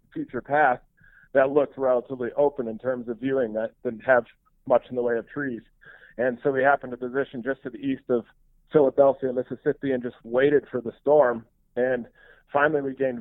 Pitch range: 125-140 Hz